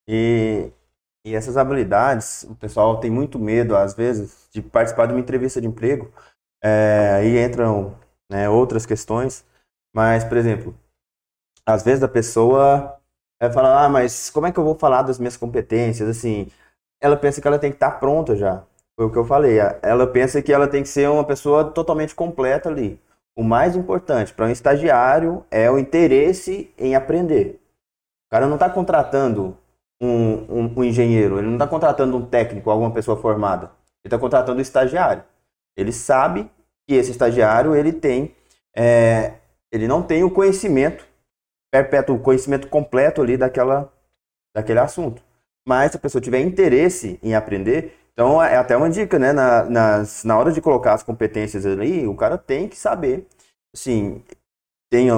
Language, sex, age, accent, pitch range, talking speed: Portuguese, male, 20-39, Brazilian, 110-140 Hz, 170 wpm